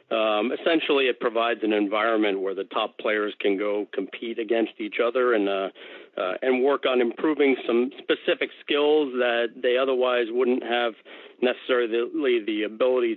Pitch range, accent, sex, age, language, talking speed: 110-145 Hz, American, male, 50-69, English, 155 wpm